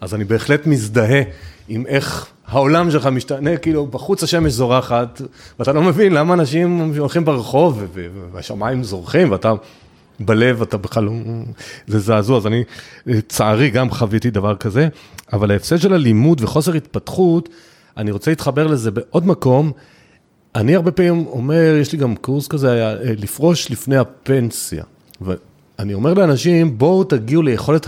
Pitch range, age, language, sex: 110-150 Hz, 40-59, Hebrew, male